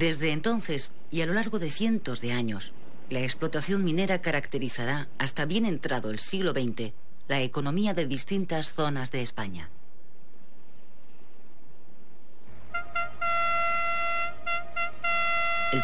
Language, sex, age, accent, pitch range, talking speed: Spanish, female, 50-69, Spanish, 125-175 Hz, 105 wpm